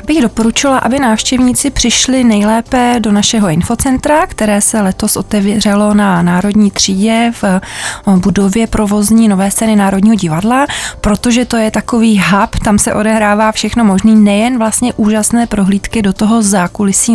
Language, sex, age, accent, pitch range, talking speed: Czech, female, 20-39, native, 190-220 Hz, 140 wpm